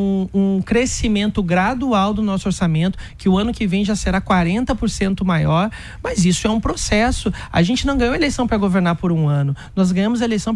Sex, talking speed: male, 195 wpm